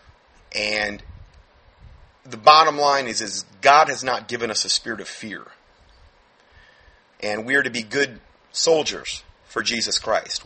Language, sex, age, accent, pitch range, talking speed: English, male, 30-49, American, 105-125 Hz, 145 wpm